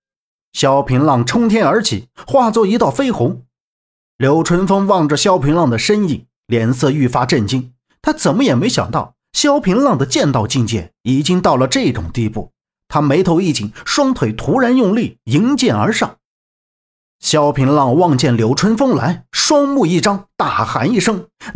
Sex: male